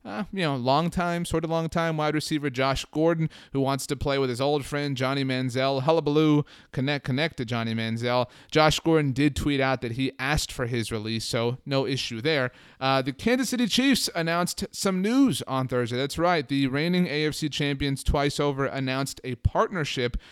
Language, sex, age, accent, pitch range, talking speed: English, male, 30-49, American, 120-150 Hz, 195 wpm